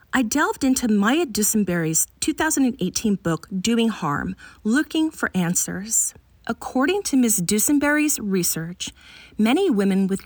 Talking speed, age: 115 wpm, 40-59